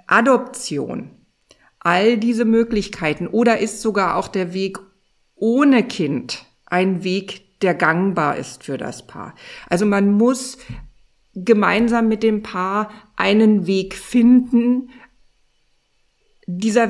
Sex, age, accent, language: female, 50-69, German, German